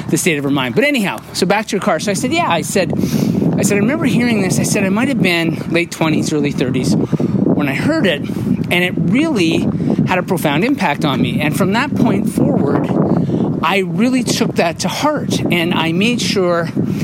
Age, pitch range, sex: 40-59, 160-210 Hz, male